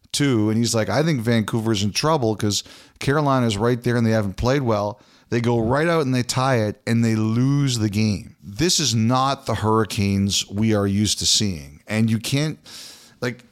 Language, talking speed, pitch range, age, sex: English, 200 wpm, 105-135 Hz, 40-59, male